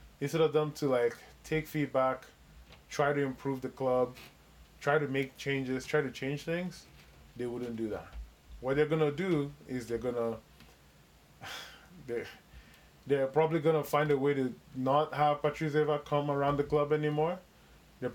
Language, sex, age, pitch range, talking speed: English, male, 20-39, 115-145 Hz, 160 wpm